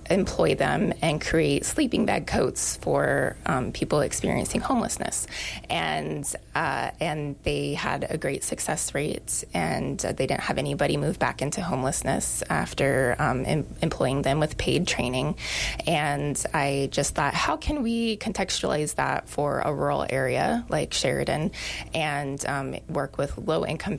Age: 20-39